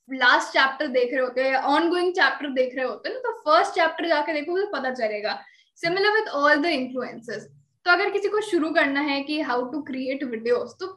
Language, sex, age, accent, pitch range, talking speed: Hindi, female, 10-29, native, 260-335 Hz, 220 wpm